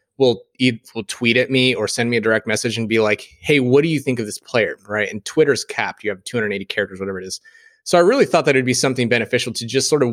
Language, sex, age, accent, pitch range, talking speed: English, male, 30-49, American, 115-145 Hz, 275 wpm